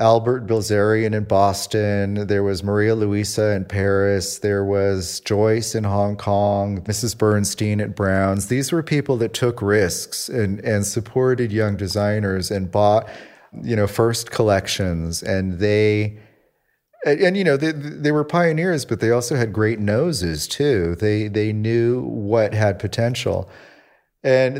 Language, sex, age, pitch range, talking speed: English, male, 30-49, 100-120 Hz, 150 wpm